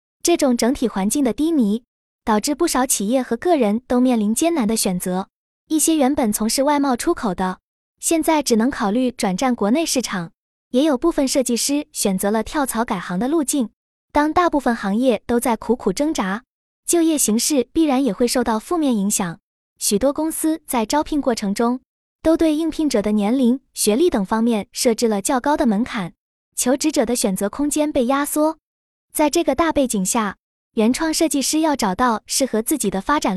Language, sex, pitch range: Chinese, female, 220-300 Hz